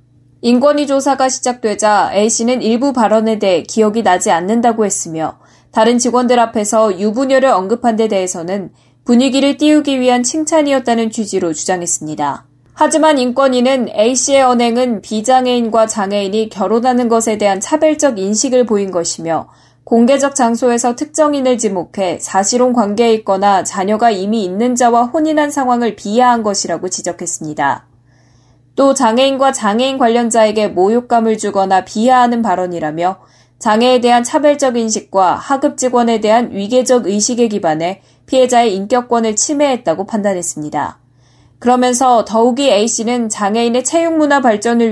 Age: 20-39